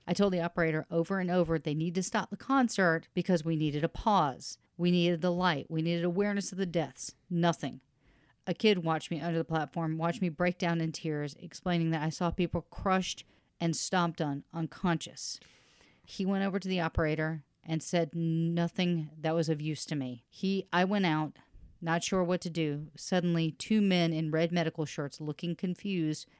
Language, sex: English, female